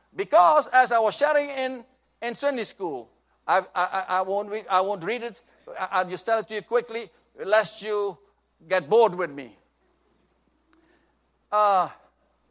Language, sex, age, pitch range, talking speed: English, male, 60-79, 190-270 Hz, 160 wpm